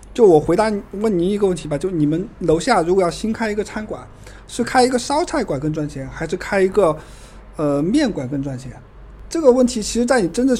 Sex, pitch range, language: male, 155-225 Hz, Chinese